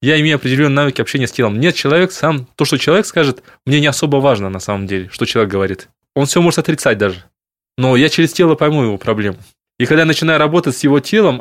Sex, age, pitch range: male, 20-39, 115-155 Hz